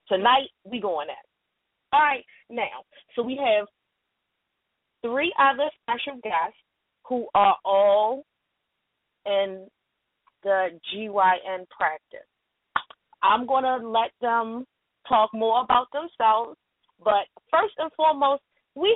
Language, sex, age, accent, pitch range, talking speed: English, female, 30-49, American, 205-280 Hz, 115 wpm